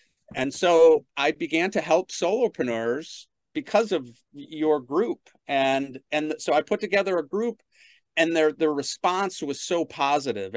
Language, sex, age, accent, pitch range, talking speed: English, male, 40-59, American, 125-185 Hz, 150 wpm